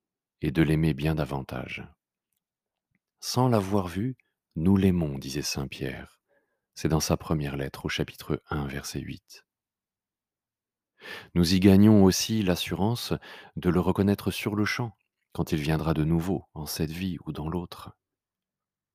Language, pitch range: French, 80-100 Hz